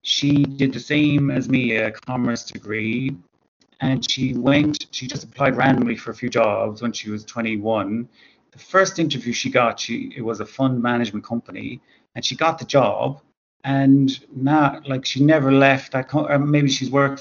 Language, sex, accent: English, male, British